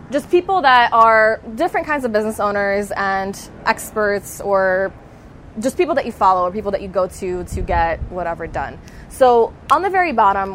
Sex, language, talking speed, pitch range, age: female, English, 180 wpm, 185-235 Hz, 20-39